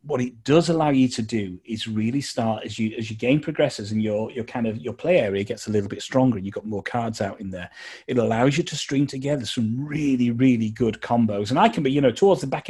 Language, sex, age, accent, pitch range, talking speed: English, male, 30-49, British, 110-145 Hz, 270 wpm